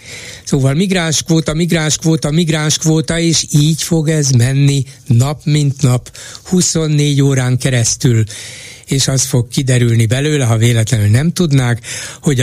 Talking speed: 130 wpm